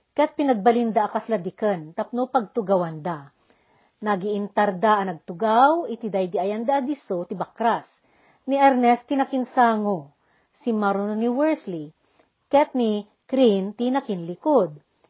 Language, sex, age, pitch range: Filipino, female, 40-59, 210-295 Hz